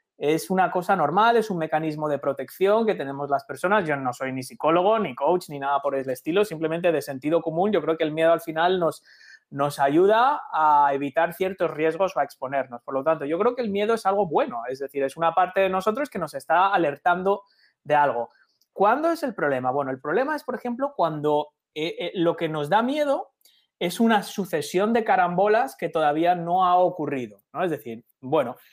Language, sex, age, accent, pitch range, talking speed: Spanish, male, 20-39, Spanish, 150-225 Hz, 210 wpm